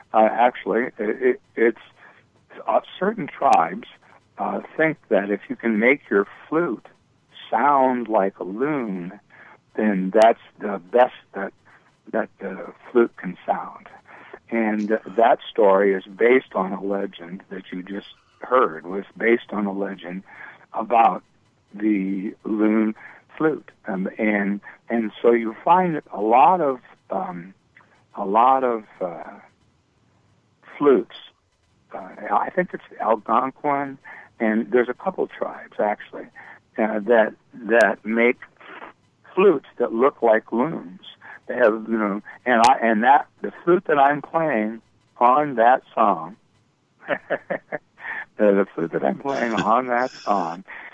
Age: 60-79